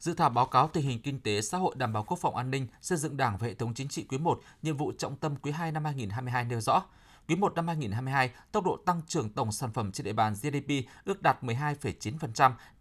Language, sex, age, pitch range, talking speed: Vietnamese, male, 20-39, 120-165 Hz, 255 wpm